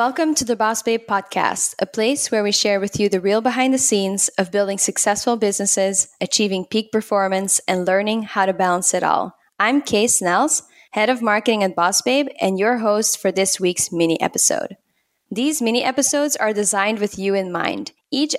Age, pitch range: 10-29, 195-250 Hz